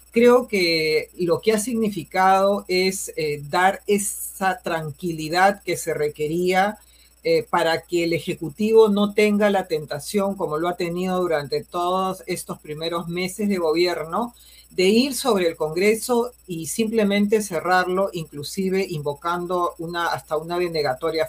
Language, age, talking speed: Spanish, 40-59, 135 wpm